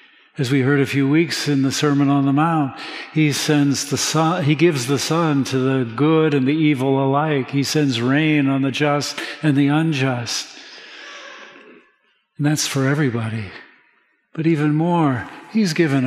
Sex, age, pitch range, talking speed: male, 60-79, 135-165 Hz, 170 wpm